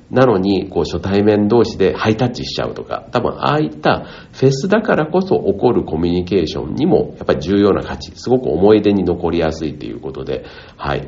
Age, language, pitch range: 50-69, Japanese, 75-115 Hz